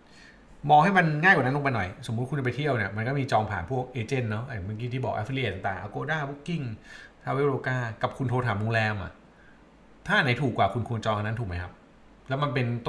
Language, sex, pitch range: Thai, male, 110-140 Hz